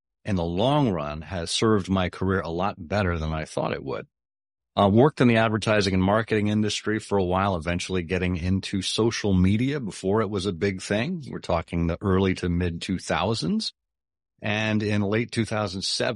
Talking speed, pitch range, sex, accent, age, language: 180 wpm, 85-105 Hz, male, American, 40-59, English